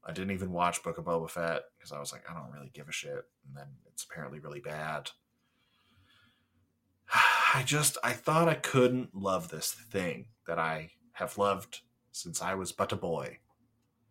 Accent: American